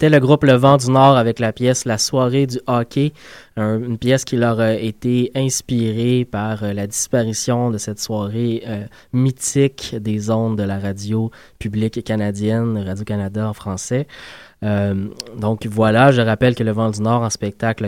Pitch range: 105-125 Hz